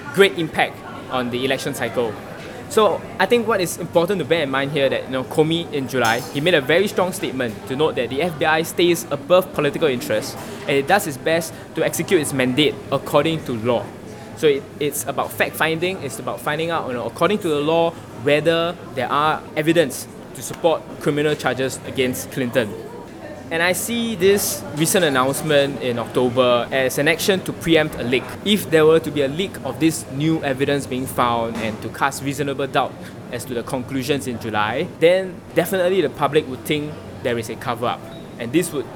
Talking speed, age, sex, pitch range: 195 wpm, 20-39, male, 130-165 Hz